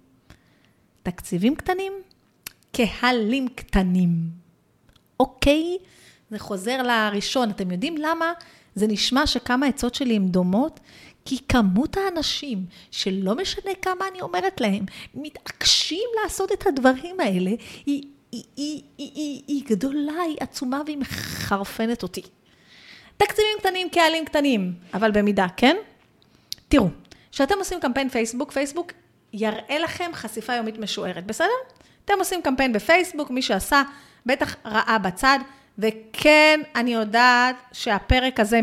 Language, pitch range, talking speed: Hebrew, 215-305 Hz, 120 wpm